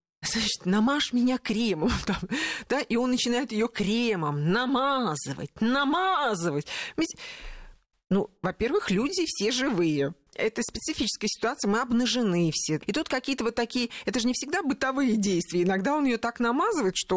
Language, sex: Russian, female